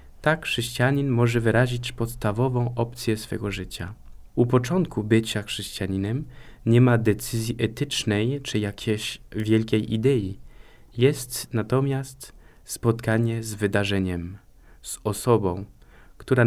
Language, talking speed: Polish, 100 wpm